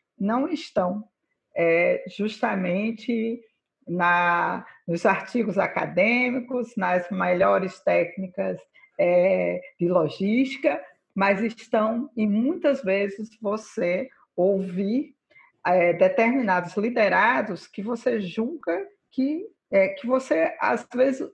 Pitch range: 195-250 Hz